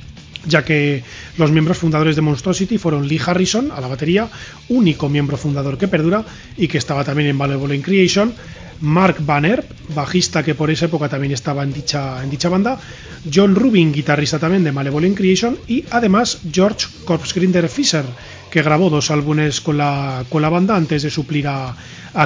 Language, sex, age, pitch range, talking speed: Spanish, male, 30-49, 145-175 Hz, 170 wpm